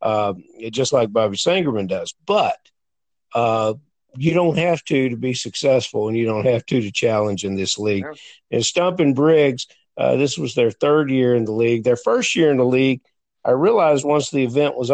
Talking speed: 200 wpm